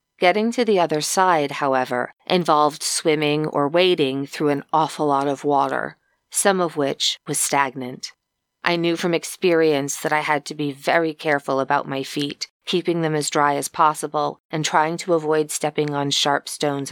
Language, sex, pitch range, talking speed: English, female, 140-165 Hz, 175 wpm